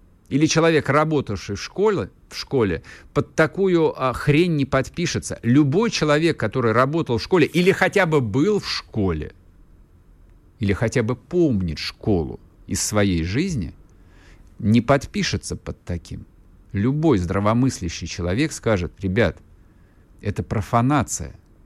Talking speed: 115 wpm